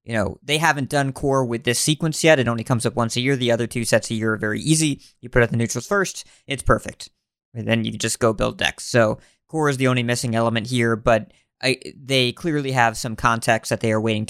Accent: American